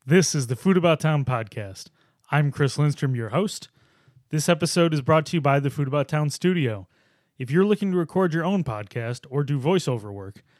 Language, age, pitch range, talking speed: English, 30-49, 125-160 Hz, 205 wpm